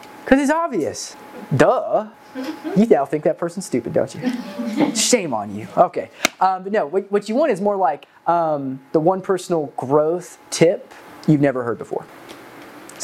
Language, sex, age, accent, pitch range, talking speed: English, male, 20-39, American, 125-180 Hz, 170 wpm